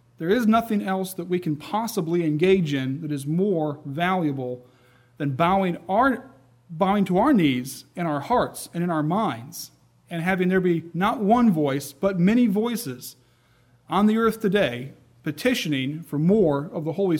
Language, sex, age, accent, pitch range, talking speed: English, male, 40-59, American, 140-195 Hz, 165 wpm